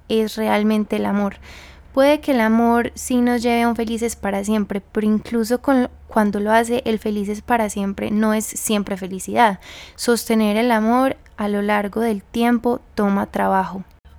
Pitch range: 200-235 Hz